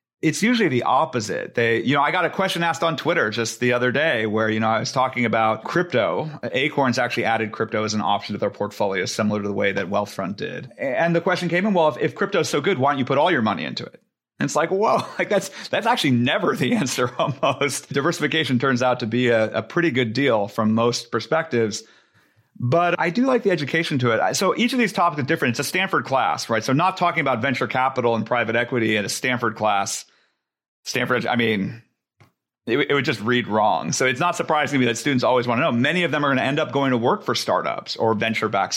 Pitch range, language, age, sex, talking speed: 110-150 Hz, English, 30-49, male, 245 wpm